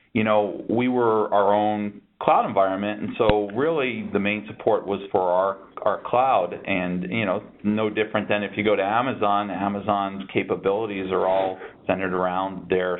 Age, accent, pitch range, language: 40-59, American, 95-110 Hz, English